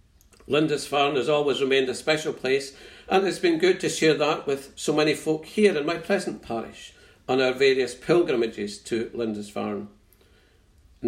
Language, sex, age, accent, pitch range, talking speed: English, male, 50-69, British, 105-140 Hz, 160 wpm